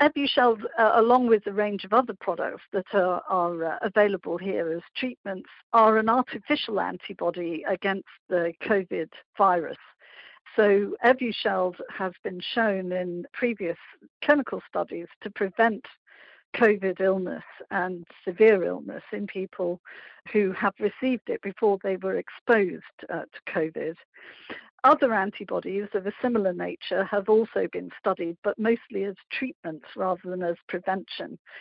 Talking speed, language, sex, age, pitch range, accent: 135 wpm, English, female, 60-79, 185-220 Hz, British